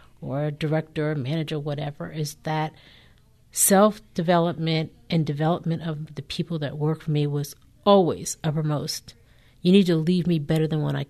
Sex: female